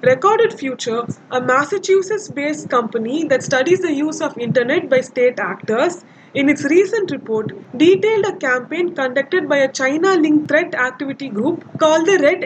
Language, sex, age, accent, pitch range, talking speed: English, female, 20-39, Indian, 255-330 Hz, 150 wpm